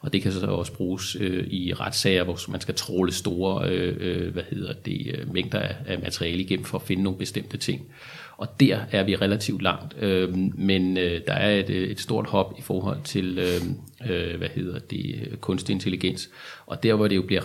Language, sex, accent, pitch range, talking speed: Danish, male, native, 95-110 Hz, 205 wpm